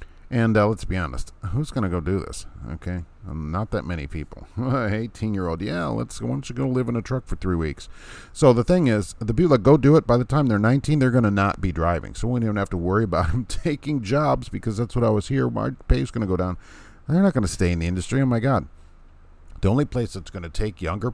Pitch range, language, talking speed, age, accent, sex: 80-115 Hz, English, 265 wpm, 40-59, American, male